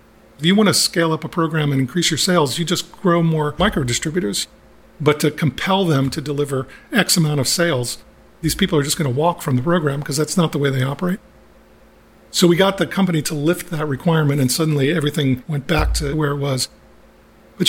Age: 50-69